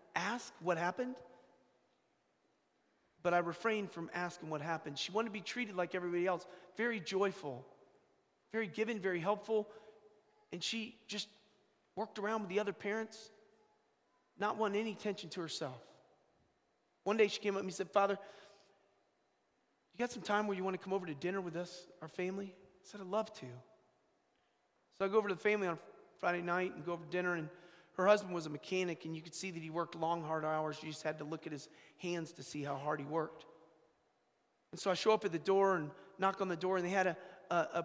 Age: 40-59